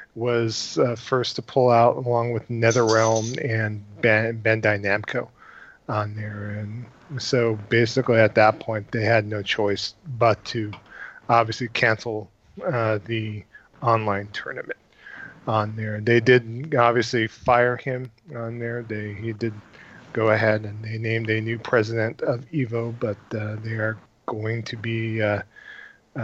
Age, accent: 40-59, American